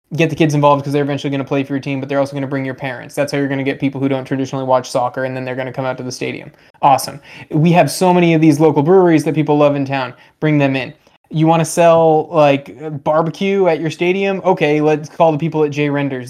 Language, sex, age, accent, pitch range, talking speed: English, male, 20-39, American, 135-155 Hz, 285 wpm